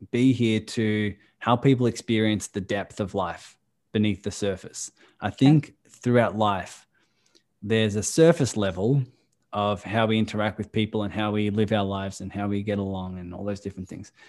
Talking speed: 180 wpm